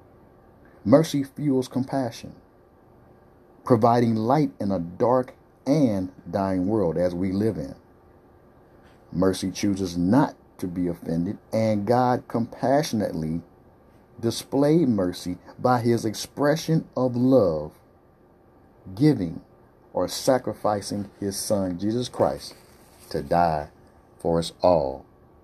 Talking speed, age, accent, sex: 100 wpm, 50-69, American, male